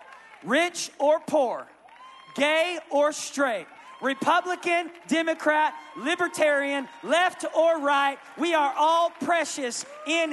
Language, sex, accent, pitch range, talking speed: English, male, American, 210-295 Hz, 100 wpm